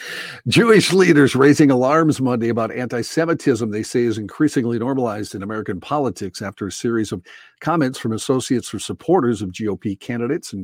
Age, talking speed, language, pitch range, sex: 50-69, 160 wpm, English, 100-125 Hz, male